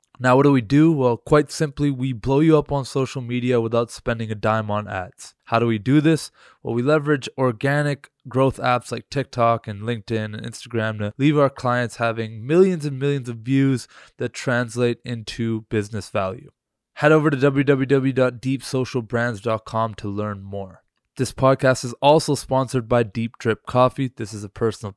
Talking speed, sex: 175 wpm, male